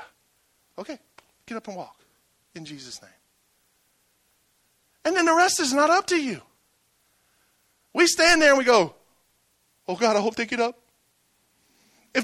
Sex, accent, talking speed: male, American, 150 wpm